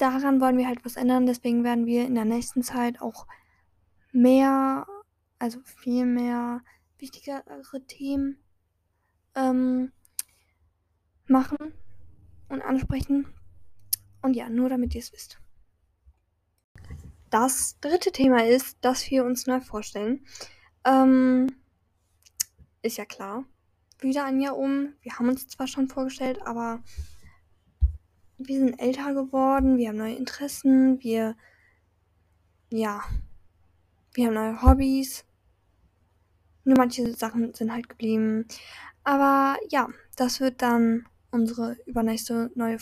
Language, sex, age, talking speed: German, female, 10-29, 115 wpm